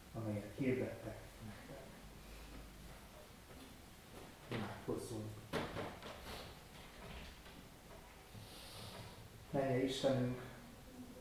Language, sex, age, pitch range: Hungarian, male, 30-49, 120-140 Hz